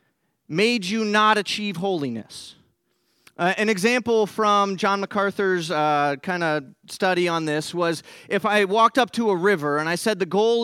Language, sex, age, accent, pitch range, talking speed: English, male, 30-49, American, 185-220 Hz, 165 wpm